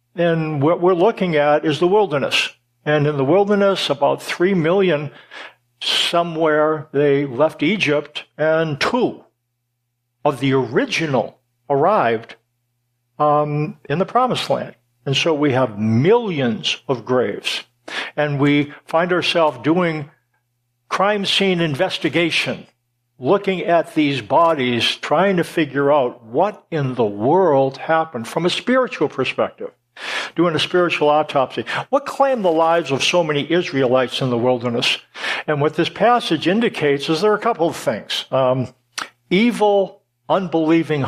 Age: 60-79